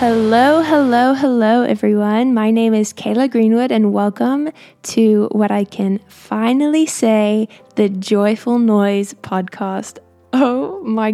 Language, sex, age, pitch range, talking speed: English, female, 10-29, 200-235 Hz, 125 wpm